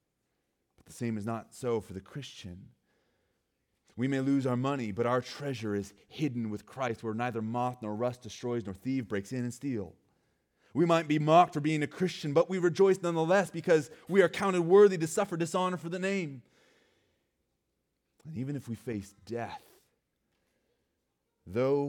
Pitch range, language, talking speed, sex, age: 100-130 Hz, English, 170 wpm, male, 30-49